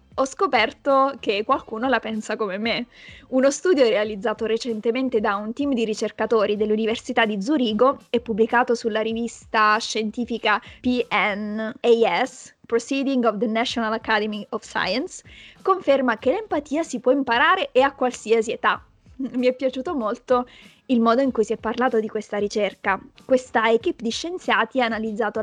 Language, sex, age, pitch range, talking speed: Italian, female, 20-39, 220-265 Hz, 150 wpm